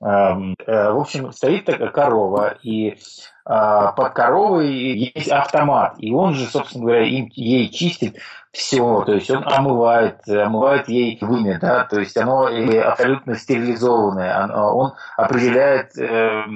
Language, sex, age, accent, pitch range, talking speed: Russian, male, 20-39, native, 105-130 Hz, 120 wpm